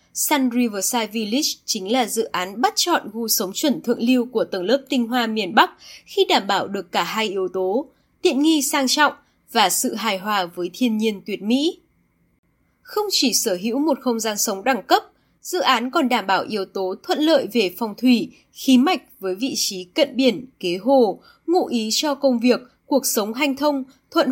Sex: female